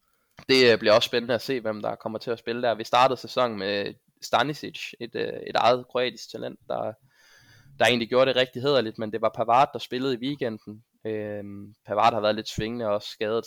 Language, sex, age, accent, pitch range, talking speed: Danish, male, 20-39, native, 105-125 Hz, 210 wpm